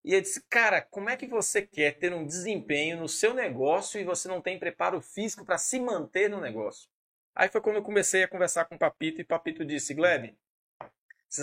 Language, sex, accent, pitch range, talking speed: Portuguese, male, Brazilian, 165-215 Hz, 220 wpm